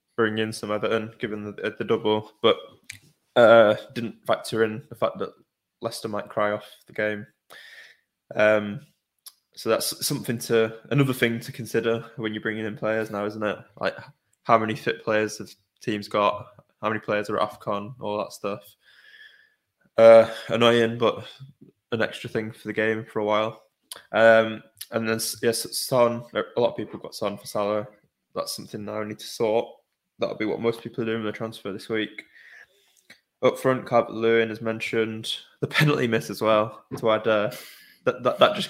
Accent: British